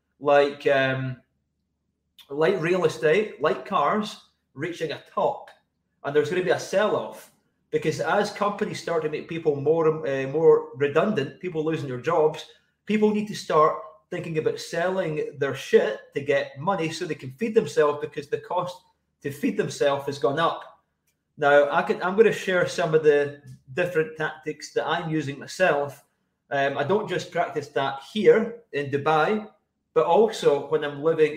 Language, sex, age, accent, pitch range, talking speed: English, male, 30-49, British, 145-200 Hz, 160 wpm